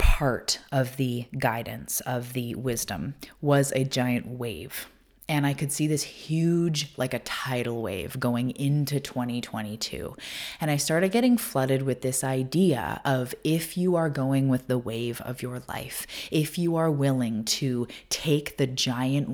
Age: 20-39